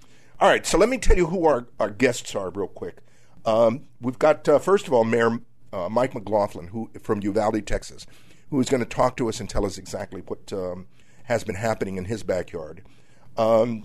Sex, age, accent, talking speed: male, 50-69, American, 210 wpm